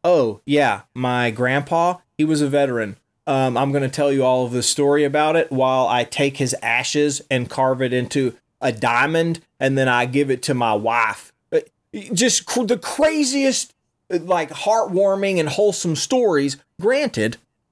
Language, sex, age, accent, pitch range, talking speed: English, male, 30-49, American, 130-195 Hz, 165 wpm